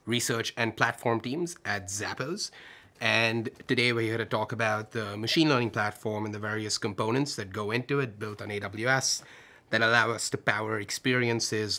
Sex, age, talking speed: male, 30-49, 175 wpm